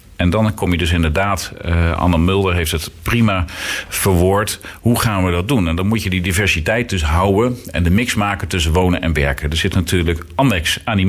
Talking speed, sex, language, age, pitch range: 210 wpm, male, Dutch, 50-69, 85-110 Hz